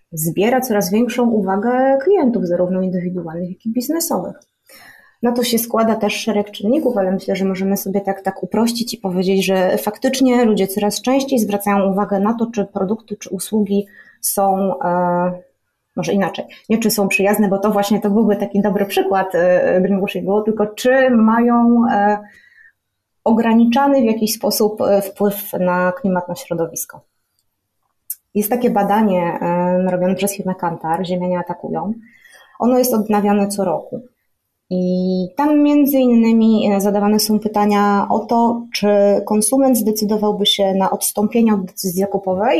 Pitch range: 195-230 Hz